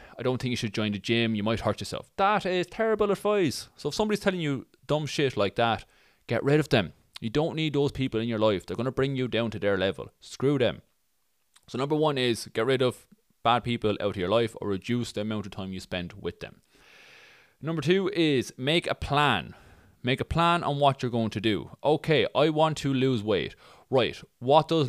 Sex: male